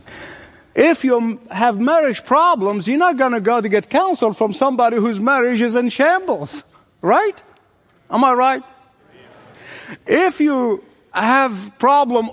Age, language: 50-69, English